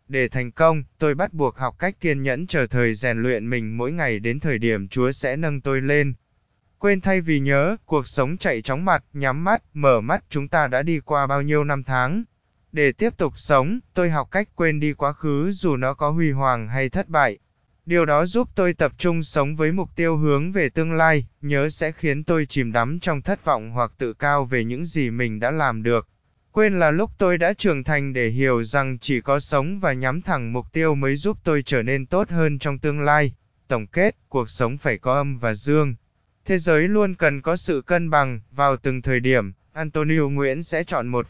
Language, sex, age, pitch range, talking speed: Vietnamese, male, 20-39, 130-165 Hz, 220 wpm